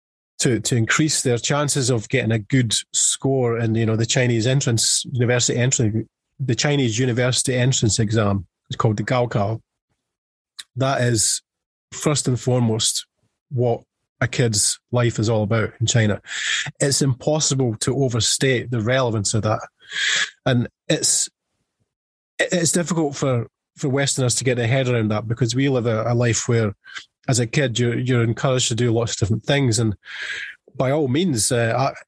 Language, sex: English, male